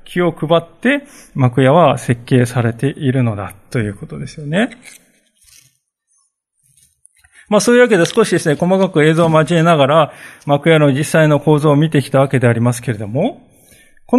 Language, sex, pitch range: Japanese, male, 135-210 Hz